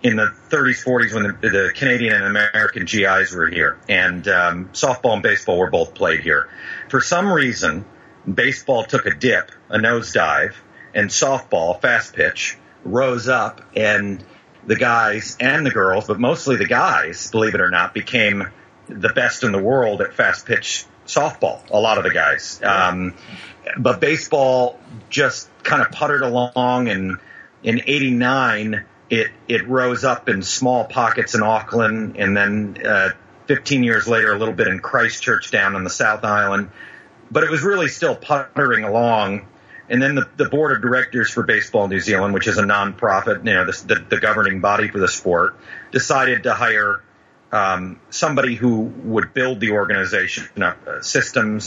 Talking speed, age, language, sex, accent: 170 wpm, 40-59, English, male, American